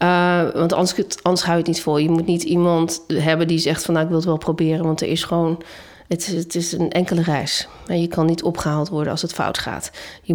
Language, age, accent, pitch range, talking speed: Dutch, 40-59, Dutch, 160-185 Hz, 260 wpm